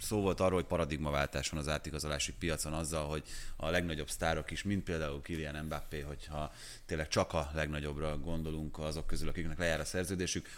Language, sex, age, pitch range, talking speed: Hungarian, male, 30-49, 80-100 Hz, 175 wpm